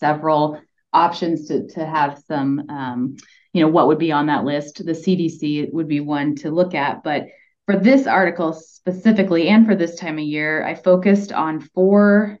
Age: 20-39